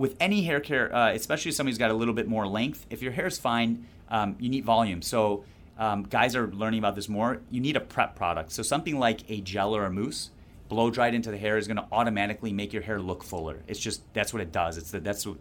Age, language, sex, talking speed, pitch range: 30-49, English, male, 255 wpm, 100-115 Hz